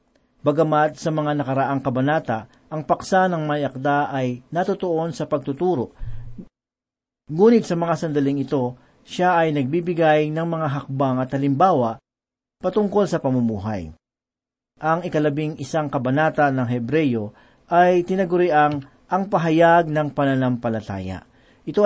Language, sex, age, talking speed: Filipino, male, 40-59, 115 wpm